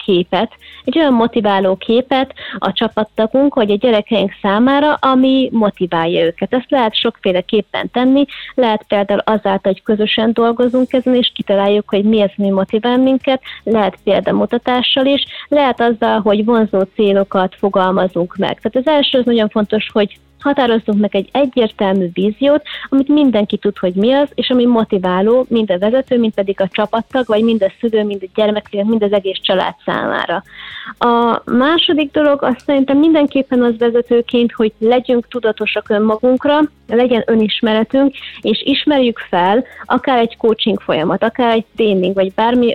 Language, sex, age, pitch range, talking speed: Hungarian, female, 20-39, 205-255 Hz, 155 wpm